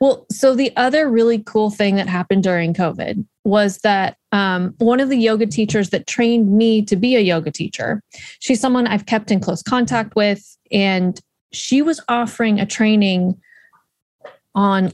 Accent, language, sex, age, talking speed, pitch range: American, English, female, 20-39, 170 wpm, 190-230 Hz